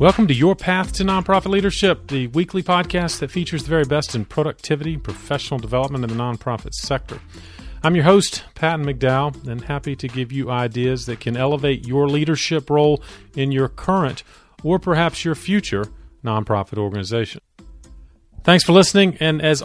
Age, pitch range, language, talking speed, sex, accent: 40-59, 115-155 Hz, English, 165 wpm, male, American